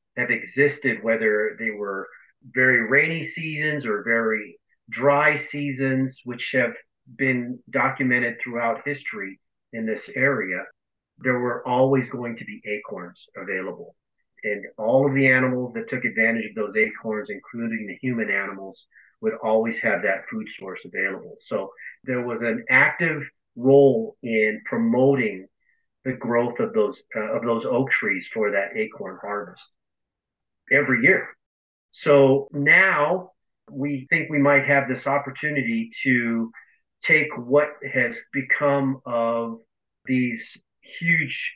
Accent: American